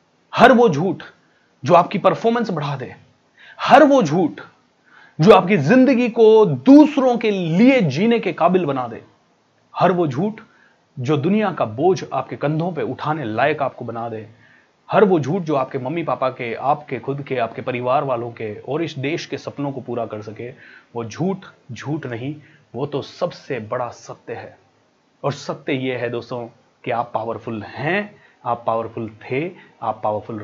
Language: Hindi